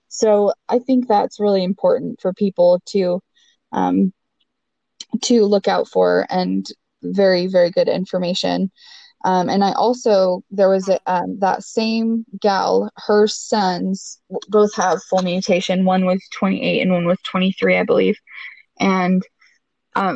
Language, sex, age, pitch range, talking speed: English, female, 20-39, 185-220 Hz, 140 wpm